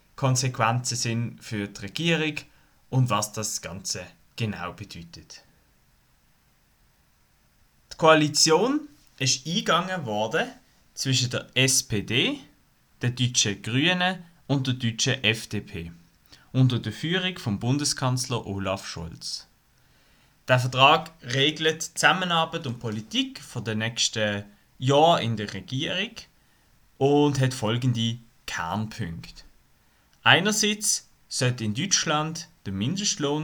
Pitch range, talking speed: 110-150 Hz, 100 wpm